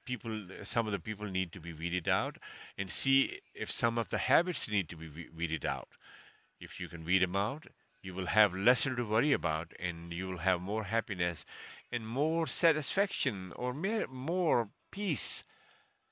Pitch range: 95-135 Hz